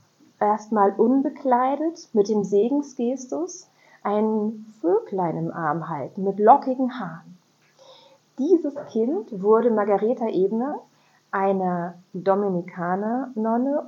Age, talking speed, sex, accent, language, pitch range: 30-49, 85 wpm, female, German, German, 195-245 Hz